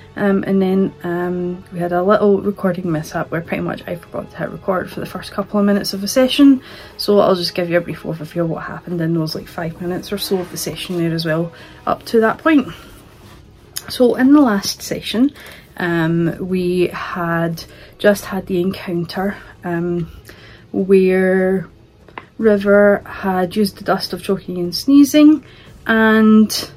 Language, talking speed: English, 175 wpm